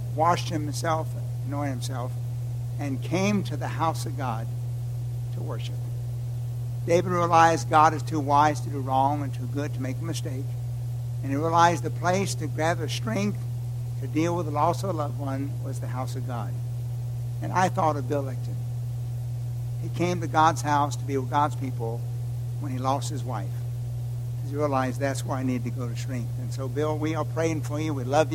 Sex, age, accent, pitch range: male, 60-79, American, 120-130 Hz